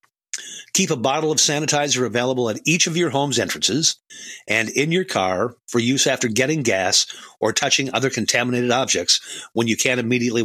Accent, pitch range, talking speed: American, 110-145 Hz, 170 wpm